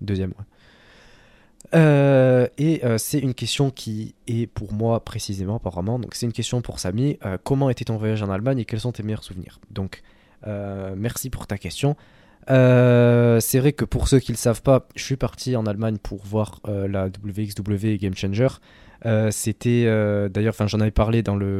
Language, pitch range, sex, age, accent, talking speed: French, 100-115 Hz, male, 20-39, French, 190 wpm